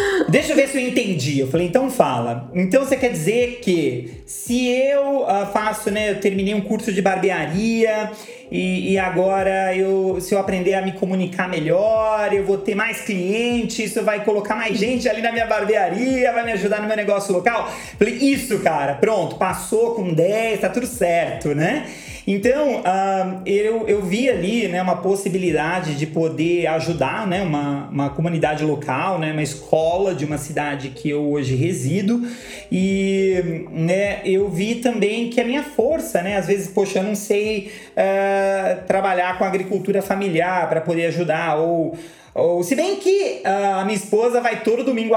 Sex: male